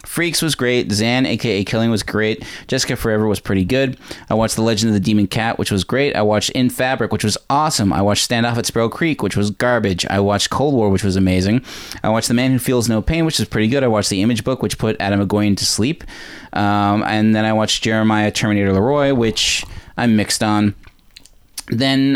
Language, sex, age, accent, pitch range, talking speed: English, male, 20-39, American, 100-125 Hz, 230 wpm